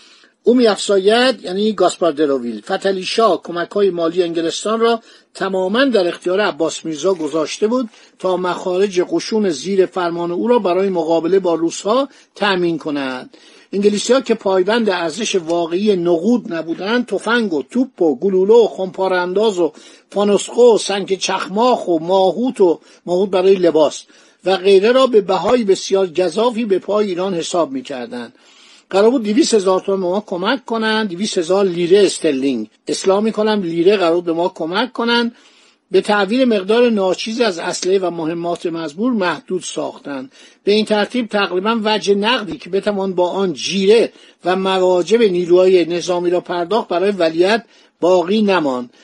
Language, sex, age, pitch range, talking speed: Persian, male, 50-69, 175-220 Hz, 145 wpm